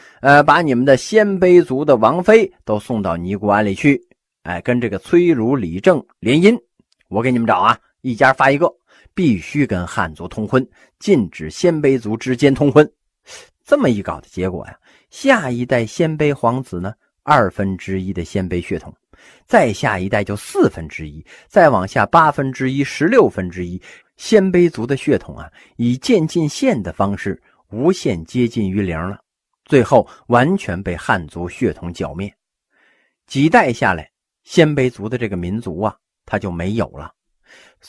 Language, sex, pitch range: Chinese, male, 95-145 Hz